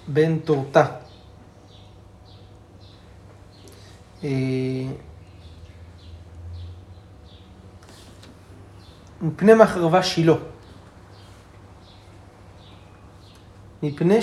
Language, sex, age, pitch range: Hebrew, male, 40-59, 100-160 Hz